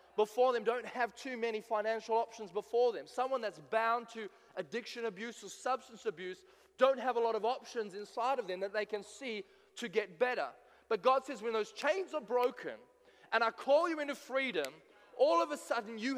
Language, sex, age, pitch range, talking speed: English, male, 20-39, 225-275 Hz, 200 wpm